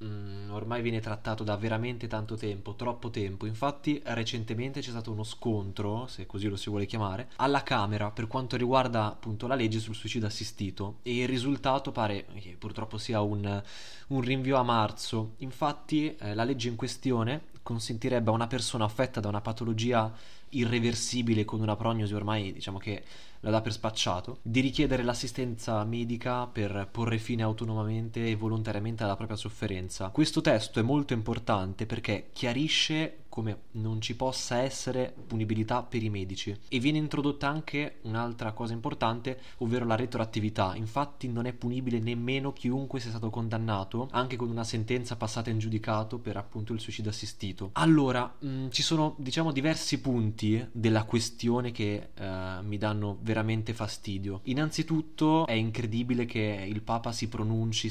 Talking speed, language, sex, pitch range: 155 wpm, Italian, male, 110-125 Hz